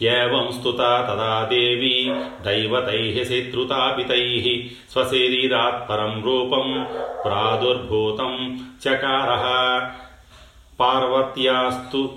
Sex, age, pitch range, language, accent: male, 40-59, 115-130 Hz, Telugu, native